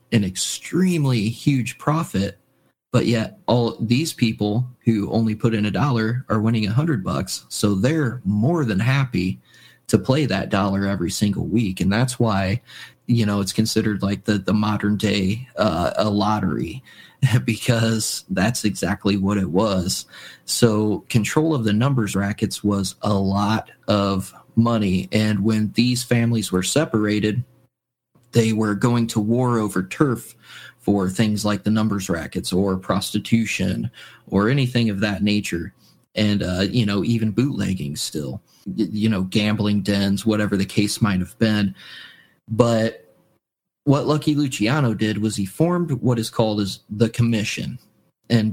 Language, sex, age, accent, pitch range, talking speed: English, male, 30-49, American, 105-120 Hz, 150 wpm